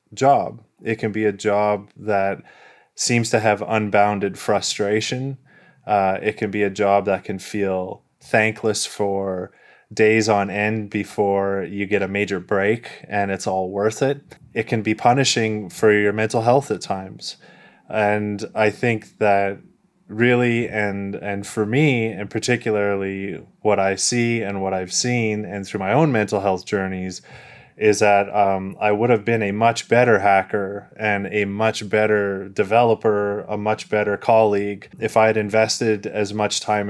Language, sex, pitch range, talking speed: English, male, 100-110 Hz, 160 wpm